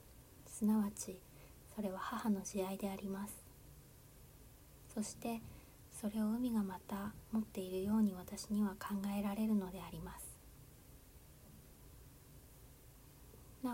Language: Japanese